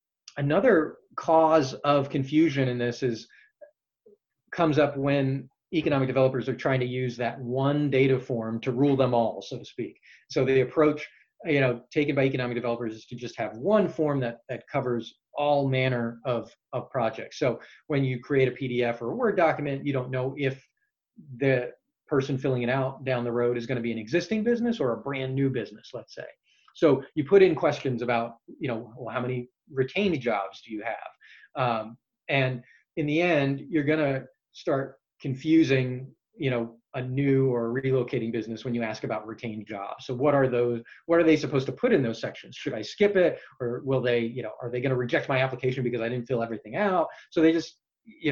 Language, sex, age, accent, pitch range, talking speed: English, male, 30-49, American, 120-145 Hz, 205 wpm